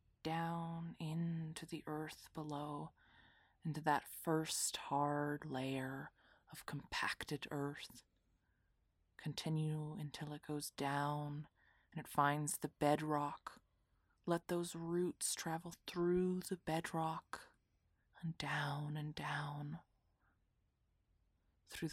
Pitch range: 115-155 Hz